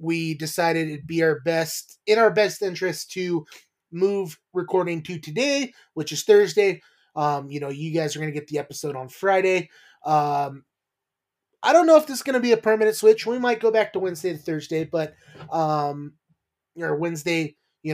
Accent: American